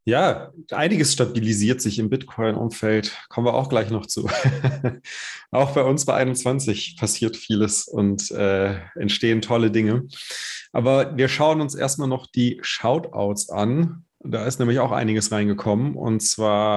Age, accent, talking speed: 30-49, German, 145 wpm